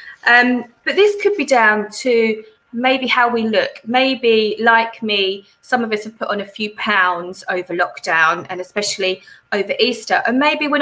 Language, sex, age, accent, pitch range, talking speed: English, female, 20-39, British, 205-270 Hz, 175 wpm